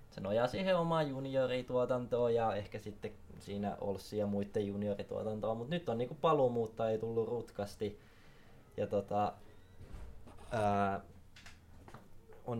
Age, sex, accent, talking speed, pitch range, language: 20-39, male, native, 115 wpm, 100-115 Hz, Finnish